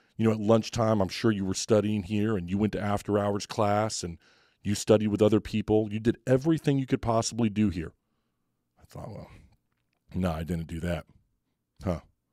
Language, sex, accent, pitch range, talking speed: English, male, American, 95-120 Hz, 190 wpm